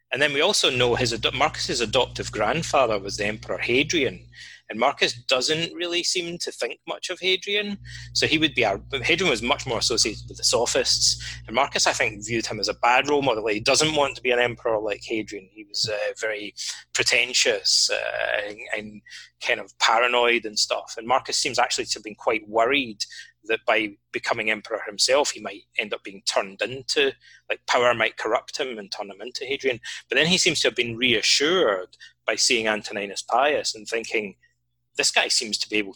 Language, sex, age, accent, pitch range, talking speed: English, male, 30-49, British, 105-175 Hz, 205 wpm